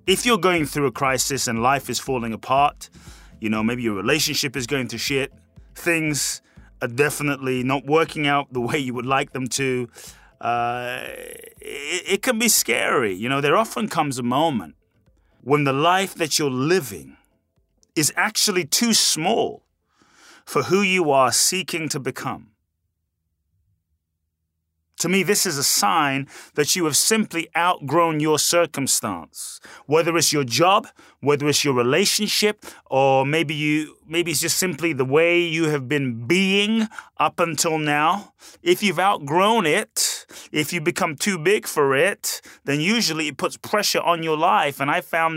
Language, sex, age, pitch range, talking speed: English, male, 30-49, 130-180 Hz, 160 wpm